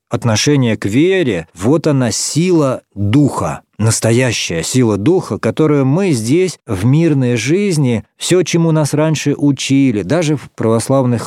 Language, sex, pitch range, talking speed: Russian, male, 115-145 Hz, 130 wpm